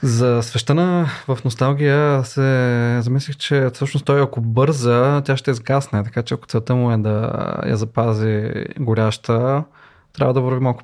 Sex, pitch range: male, 115-135 Hz